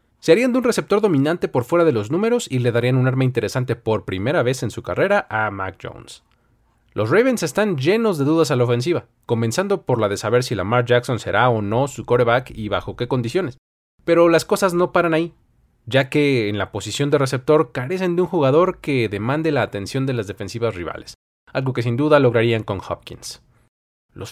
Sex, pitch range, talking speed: male, 115-170 Hz, 210 wpm